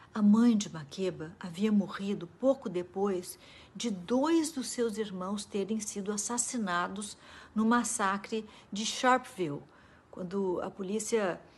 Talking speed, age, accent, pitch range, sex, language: 120 wpm, 60-79, Brazilian, 180-230 Hz, female, Portuguese